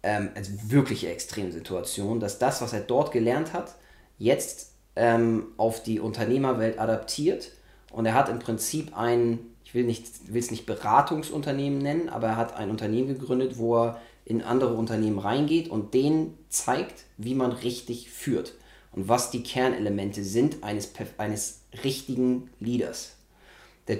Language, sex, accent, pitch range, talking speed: German, male, German, 110-125 Hz, 155 wpm